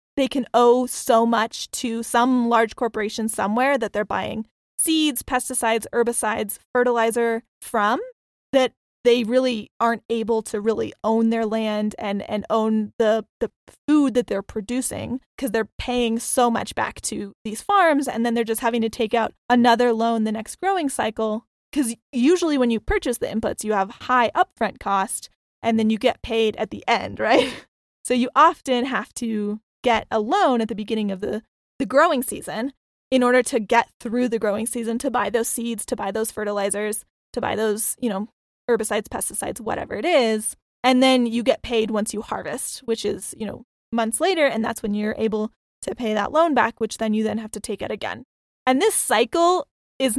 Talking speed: 190 wpm